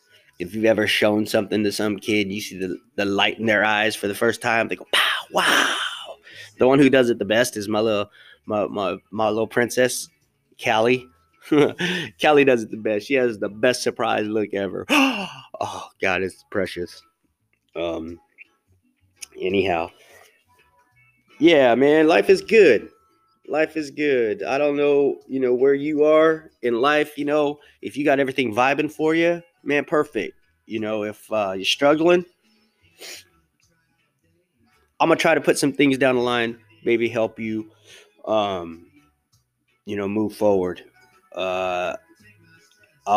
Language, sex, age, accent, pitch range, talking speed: English, male, 20-39, American, 105-140 Hz, 155 wpm